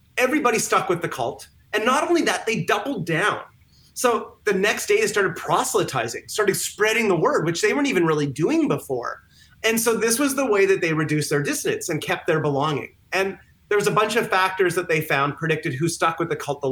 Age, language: 30-49, English